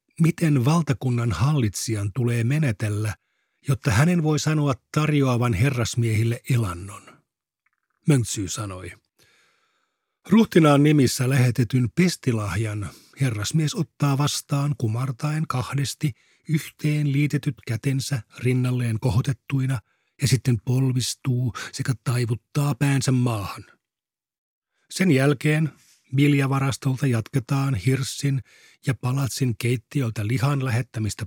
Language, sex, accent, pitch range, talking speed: Finnish, male, native, 115-140 Hz, 85 wpm